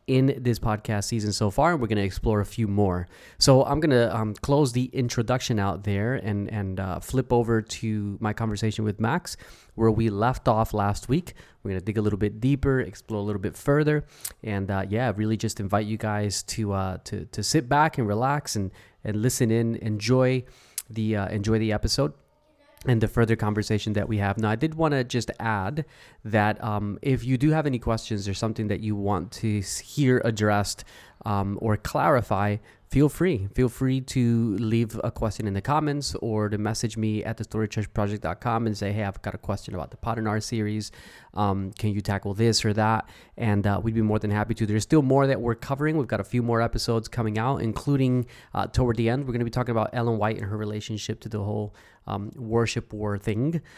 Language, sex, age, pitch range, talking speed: English, male, 20-39, 105-120 Hz, 215 wpm